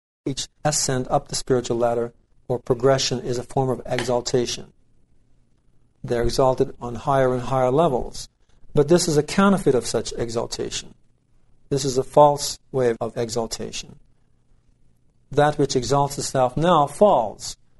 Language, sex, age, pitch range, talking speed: English, male, 50-69, 120-140 Hz, 140 wpm